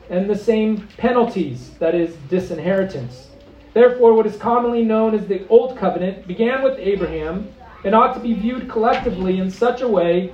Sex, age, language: male, 40-59, English